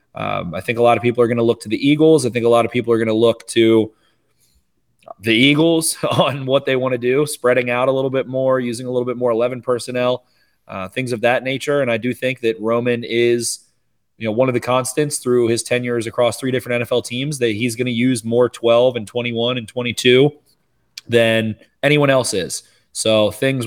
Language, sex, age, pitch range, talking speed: English, male, 20-39, 115-125 Hz, 230 wpm